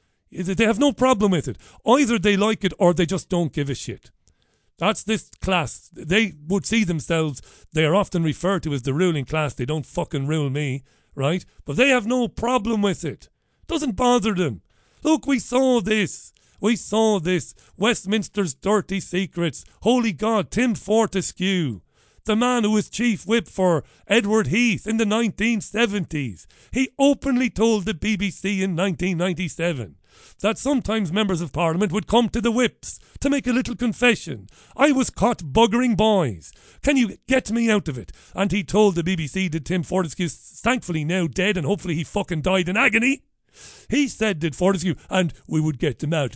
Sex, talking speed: male, 180 wpm